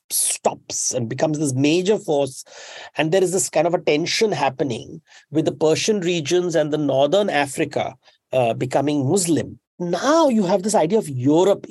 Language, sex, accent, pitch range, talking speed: English, male, Indian, 145-205 Hz, 170 wpm